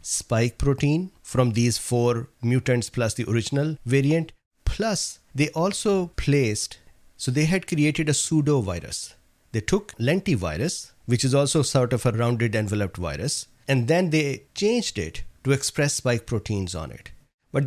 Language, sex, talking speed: English, male, 155 wpm